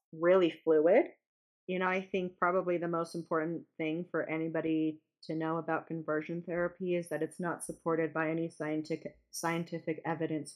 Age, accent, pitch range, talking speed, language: 30-49, American, 160-185 Hz, 160 wpm, English